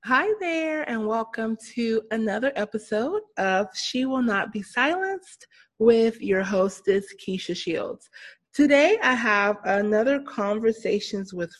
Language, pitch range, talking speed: English, 195-235 Hz, 125 wpm